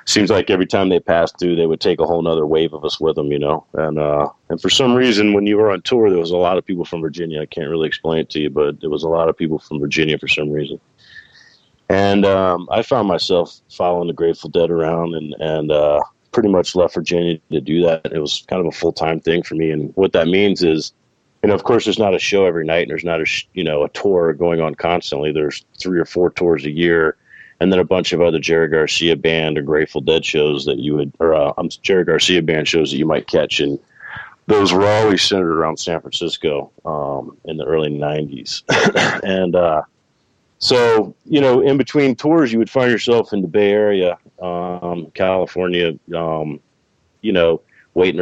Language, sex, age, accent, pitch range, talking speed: English, male, 40-59, American, 80-95 Hz, 230 wpm